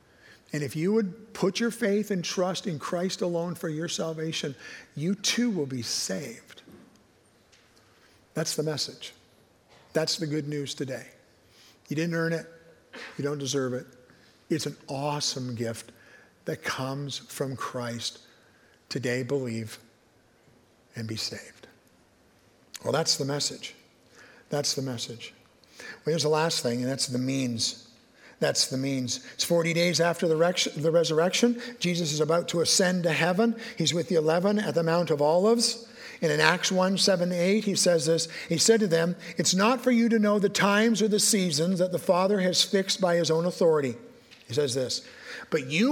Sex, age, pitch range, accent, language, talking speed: male, 50-69, 140-205 Hz, American, English, 170 wpm